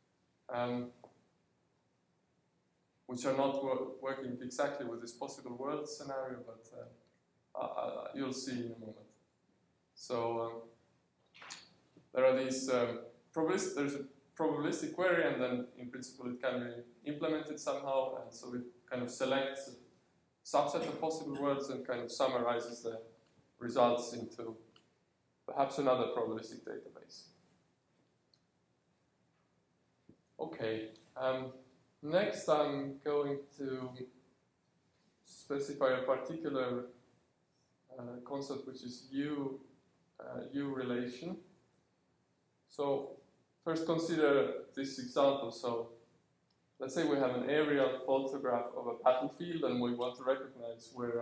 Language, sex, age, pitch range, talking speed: English, male, 20-39, 120-140 Hz, 120 wpm